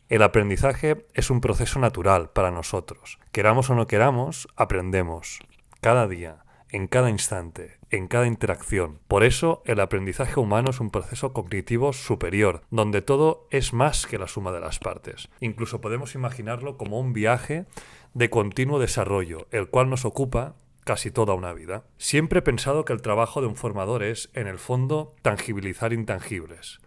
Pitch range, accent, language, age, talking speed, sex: 105-130 Hz, Spanish, Spanish, 30-49, 165 wpm, male